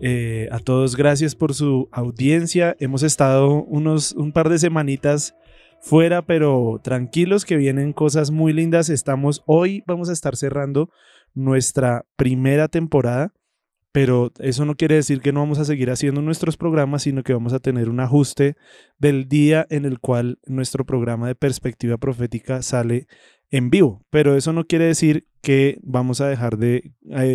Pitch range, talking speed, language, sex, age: 130-150 Hz, 160 wpm, English, male, 20-39